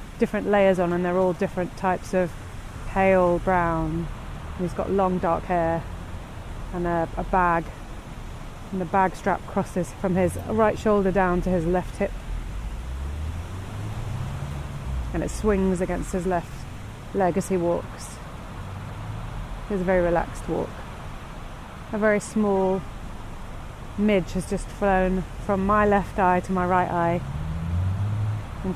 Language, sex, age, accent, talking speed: English, female, 30-49, British, 135 wpm